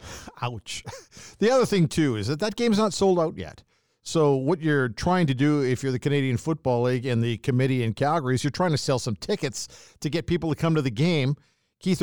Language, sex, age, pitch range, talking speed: English, male, 50-69, 125-155 Hz, 230 wpm